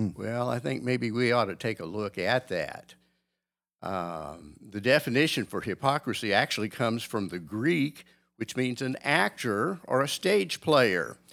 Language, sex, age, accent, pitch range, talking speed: English, male, 60-79, American, 95-125 Hz, 160 wpm